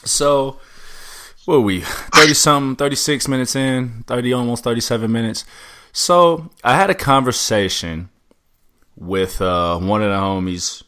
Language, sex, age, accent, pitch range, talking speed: English, male, 20-39, American, 85-125 Hz, 125 wpm